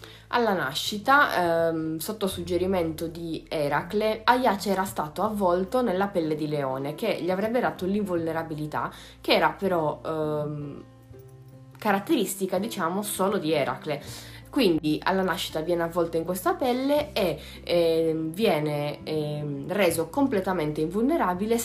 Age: 20-39